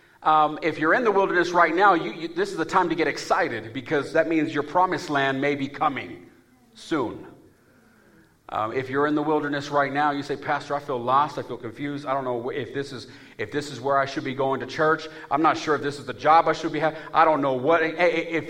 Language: English